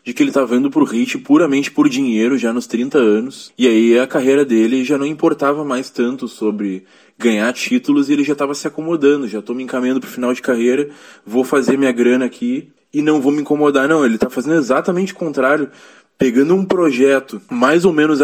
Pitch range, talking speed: 130-190 Hz, 210 wpm